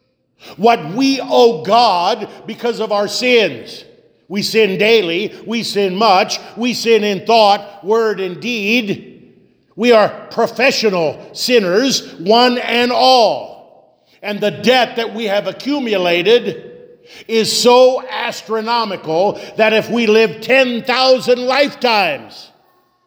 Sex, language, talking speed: male, English, 115 wpm